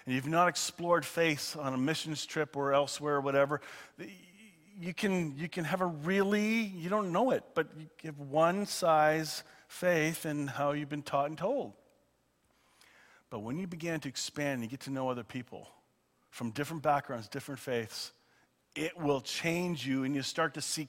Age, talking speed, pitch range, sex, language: 40-59, 180 wpm, 120-165 Hz, male, English